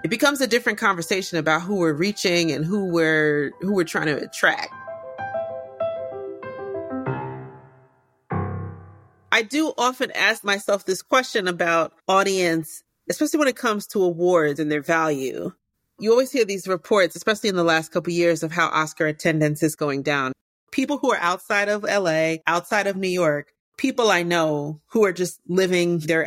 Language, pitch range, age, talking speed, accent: English, 160-210 Hz, 30-49, 165 wpm, American